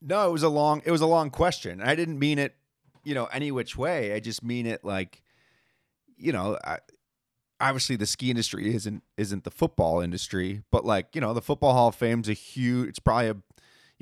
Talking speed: 220 wpm